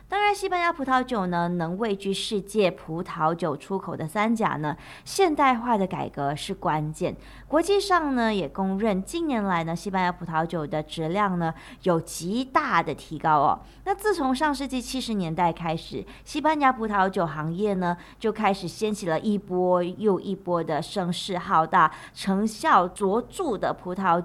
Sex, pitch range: female, 175-255 Hz